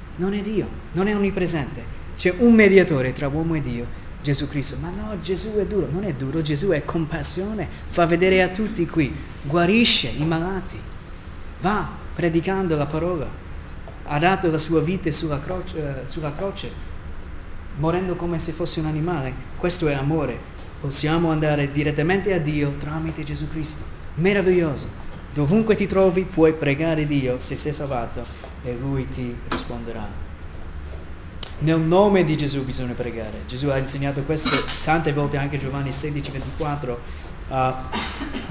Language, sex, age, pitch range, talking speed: Italian, male, 30-49, 125-175 Hz, 145 wpm